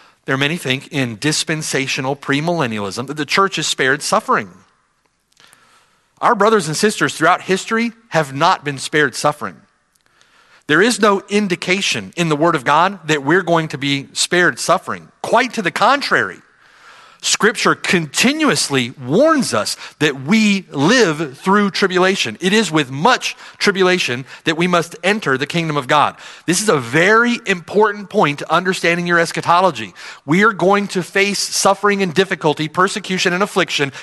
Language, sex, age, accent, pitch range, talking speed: English, male, 40-59, American, 150-220 Hz, 155 wpm